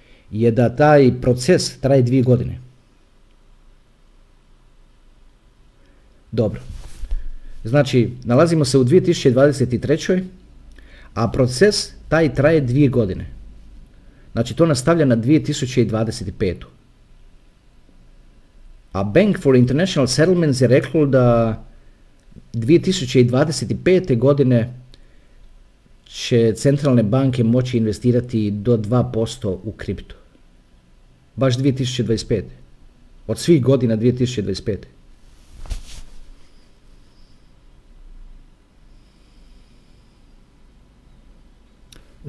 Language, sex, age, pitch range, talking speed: Croatian, male, 50-69, 105-140 Hz, 70 wpm